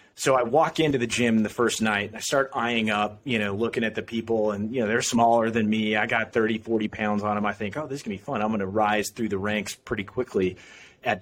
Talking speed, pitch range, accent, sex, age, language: 285 wpm, 110-140 Hz, American, male, 30-49, English